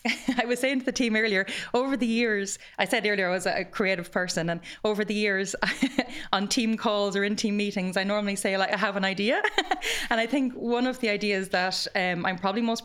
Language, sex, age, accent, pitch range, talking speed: English, female, 20-39, Irish, 190-230 Hz, 230 wpm